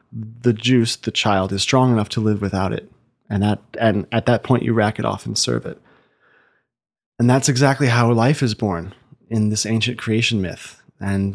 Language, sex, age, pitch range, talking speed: English, male, 30-49, 105-125 Hz, 195 wpm